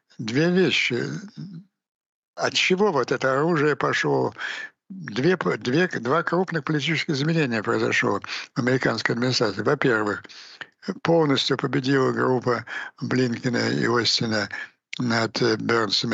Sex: male